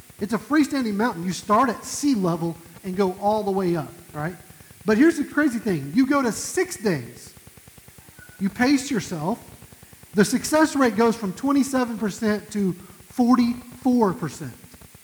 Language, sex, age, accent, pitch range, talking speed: English, male, 40-59, American, 165-245 Hz, 150 wpm